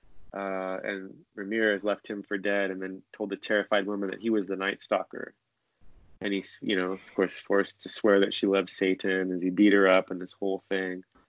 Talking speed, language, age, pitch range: 220 wpm, English, 20-39, 95-110 Hz